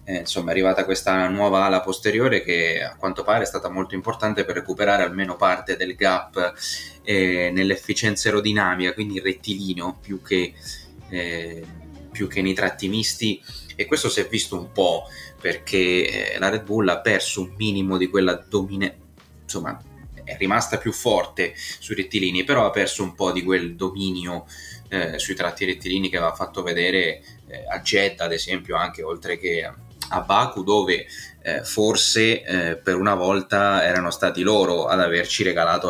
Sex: male